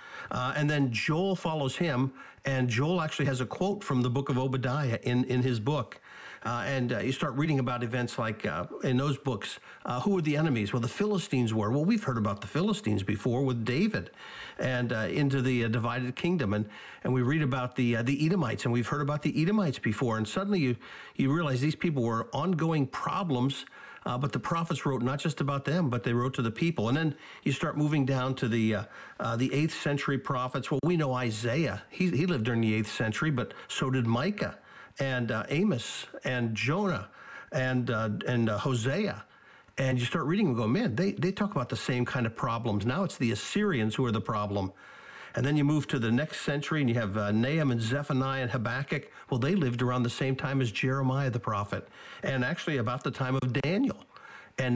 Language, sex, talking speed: English, male, 220 wpm